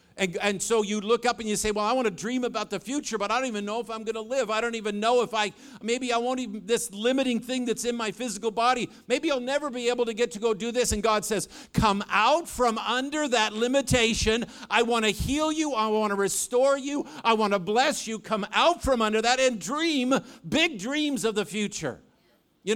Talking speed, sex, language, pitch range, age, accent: 245 wpm, male, English, 205-250 Hz, 50-69, American